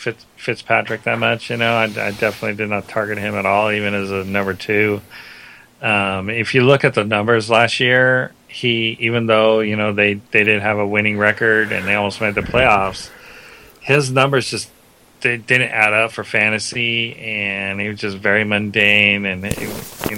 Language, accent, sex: English, American, male